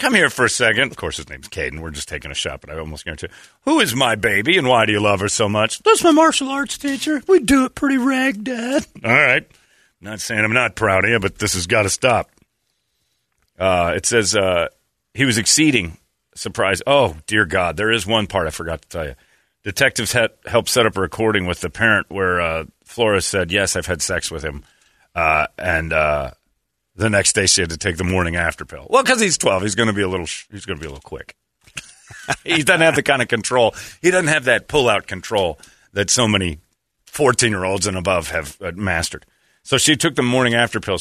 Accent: American